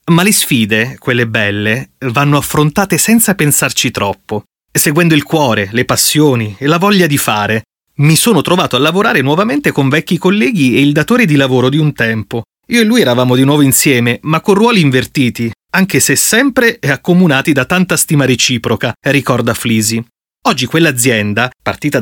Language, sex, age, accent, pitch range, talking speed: Italian, male, 30-49, native, 120-165 Hz, 170 wpm